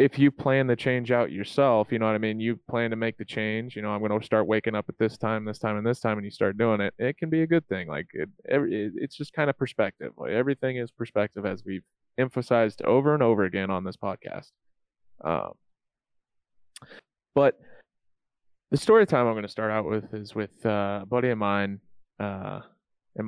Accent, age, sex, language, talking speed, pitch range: American, 20-39, male, English, 225 wpm, 105-120 Hz